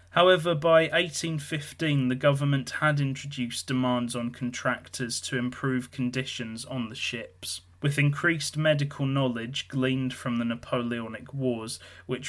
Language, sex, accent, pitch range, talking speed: English, male, British, 120-140 Hz, 125 wpm